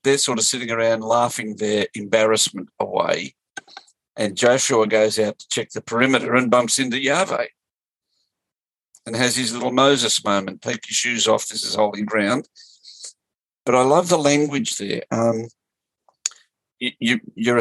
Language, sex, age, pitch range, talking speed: English, male, 50-69, 110-130 Hz, 145 wpm